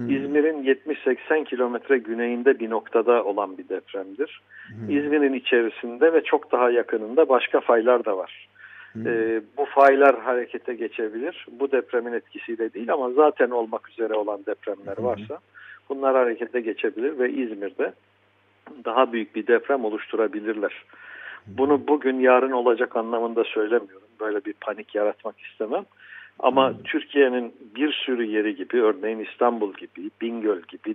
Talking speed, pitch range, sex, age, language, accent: 130 wpm, 115-150 Hz, male, 60-79, Turkish, native